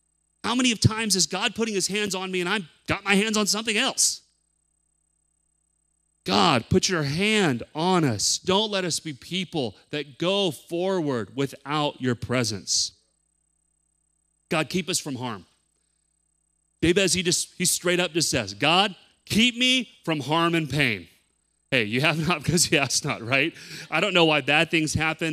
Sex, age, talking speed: male, 30-49, 175 wpm